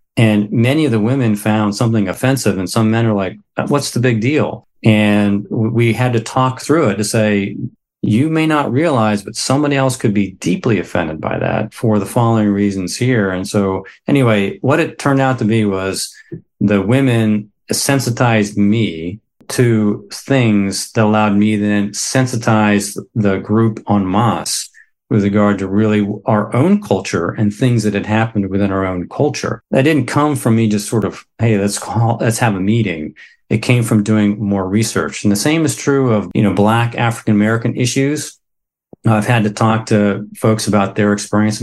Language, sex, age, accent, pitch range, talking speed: English, male, 40-59, American, 105-115 Hz, 180 wpm